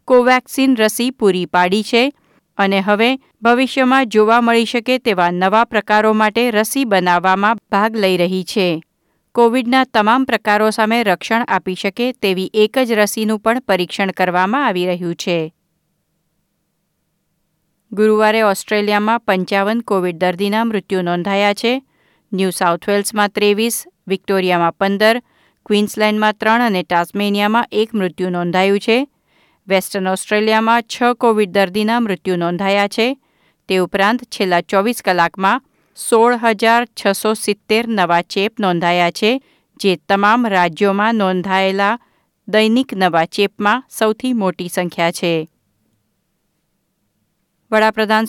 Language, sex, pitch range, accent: Gujarati, female, 185-225 Hz, native